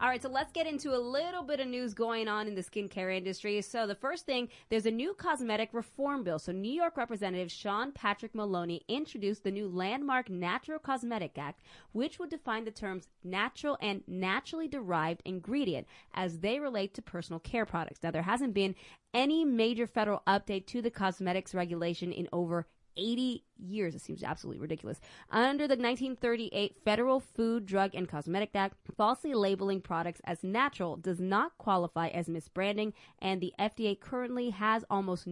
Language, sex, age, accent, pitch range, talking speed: English, female, 20-39, American, 175-230 Hz, 175 wpm